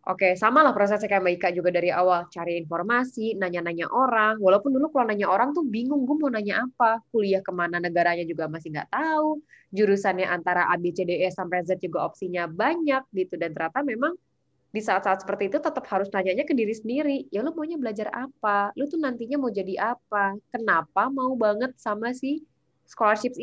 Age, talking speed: 20-39, 180 wpm